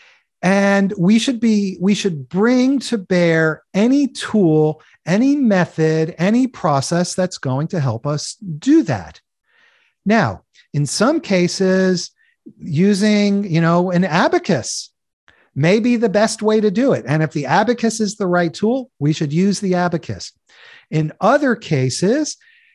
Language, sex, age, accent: English, male, 40-59, American